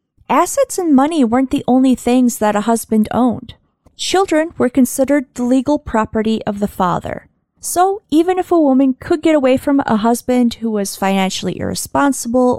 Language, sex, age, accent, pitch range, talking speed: English, female, 30-49, American, 210-285 Hz, 165 wpm